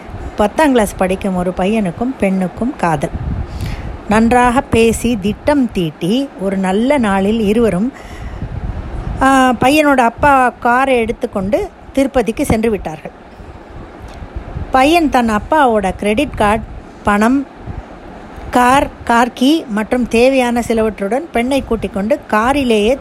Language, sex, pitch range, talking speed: Tamil, female, 190-250 Hz, 100 wpm